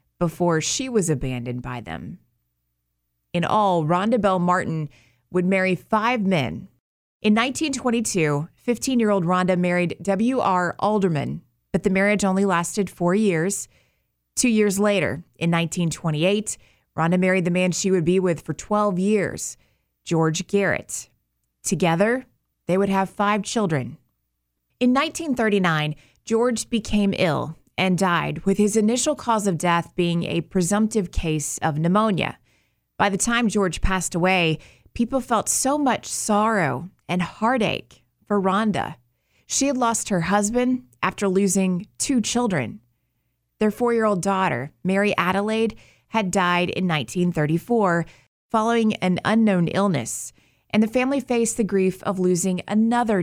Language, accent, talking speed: English, American, 135 wpm